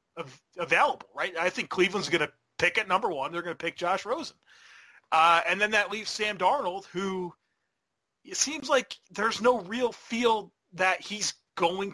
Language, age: English, 30-49